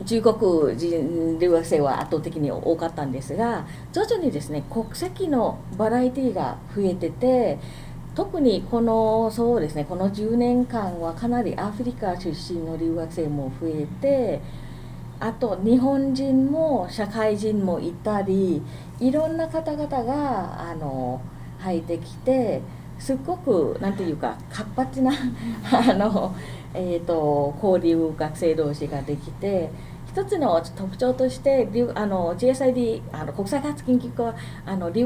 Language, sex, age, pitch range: Japanese, female, 40-59, 160-245 Hz